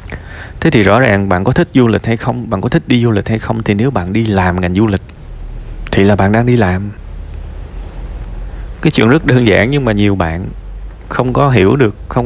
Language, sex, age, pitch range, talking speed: Vietnamese, male, 20-39, 95-125 Hz, 230 wpm